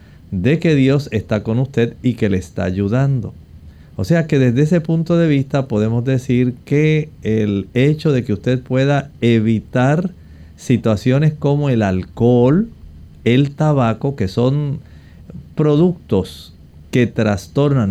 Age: 50-69